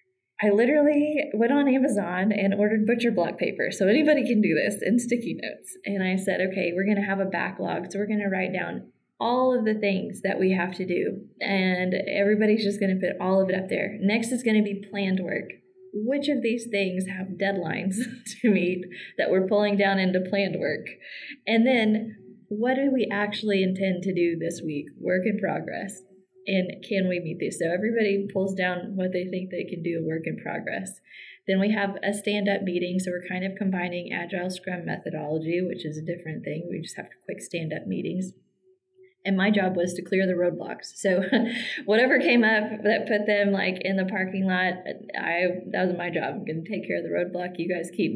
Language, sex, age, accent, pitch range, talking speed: English, female, 20-39, American, 180-215 Hz, 210 wpm